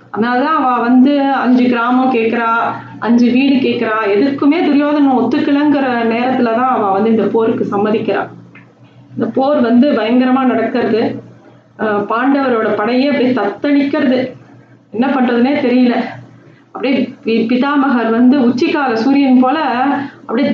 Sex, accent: female, native